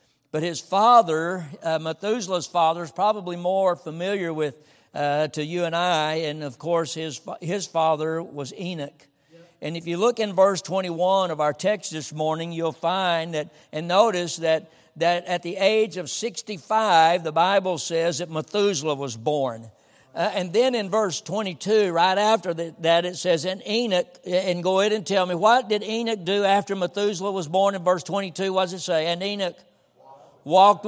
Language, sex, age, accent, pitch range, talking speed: English, male, 60-79, American, 160-195 Hz, 180 wpm